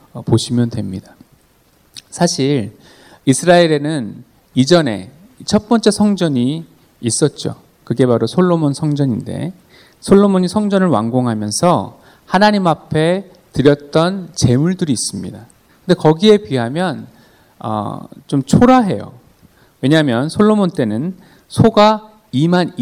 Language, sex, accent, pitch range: Korean, male, native, 125-190 Hz